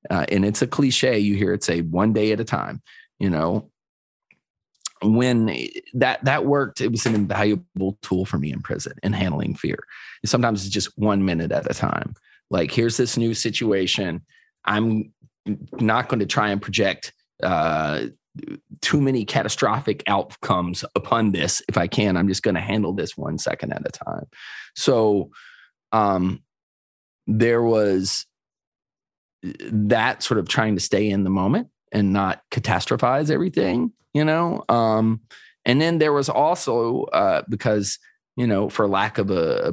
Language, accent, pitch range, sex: English, American, 95-115 Hz, male